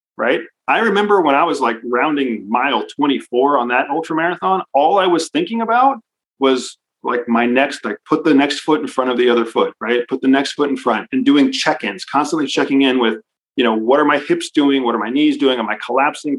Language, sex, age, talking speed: English, male, 40-59, 235 wpm